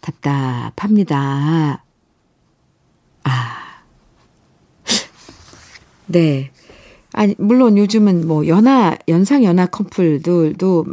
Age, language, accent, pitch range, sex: 50-69, Korean, native, 160-210 Hz, female